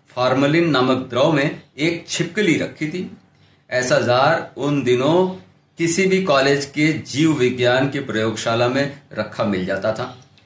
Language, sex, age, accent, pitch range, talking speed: Hindi, male, 50-69, native, 125-170 Hz, 150 wpm